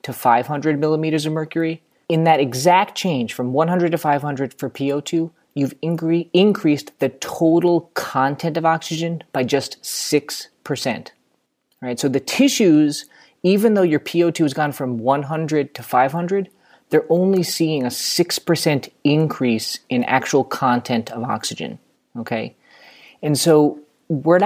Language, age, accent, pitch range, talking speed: English, 30-49, American, 125-160 Hz, 135 wpm